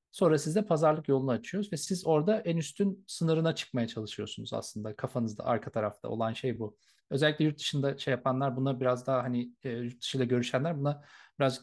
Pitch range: 125-165 Hz